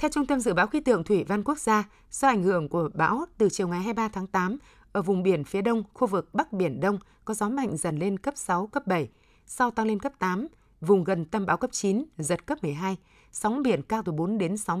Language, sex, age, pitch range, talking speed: Vietnamese, female, 20-39, 185-235 Hz, 250 wpm